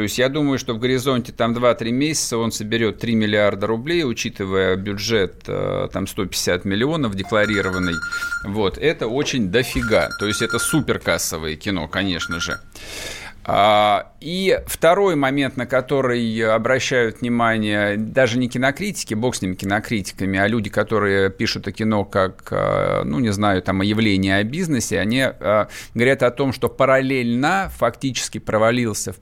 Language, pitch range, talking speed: Russian, 105-130 Hz, 145 wpm